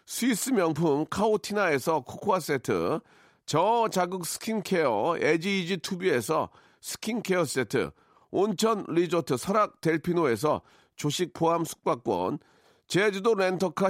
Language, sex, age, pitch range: Korean, male, 40-59, 160-210 Hz